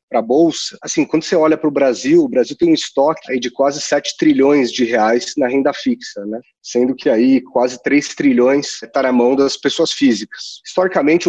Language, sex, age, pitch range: Portuguese, male, 30-49, 125-160 Hz